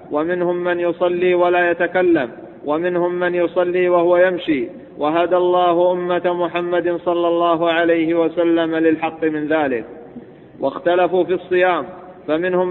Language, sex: Arabic, male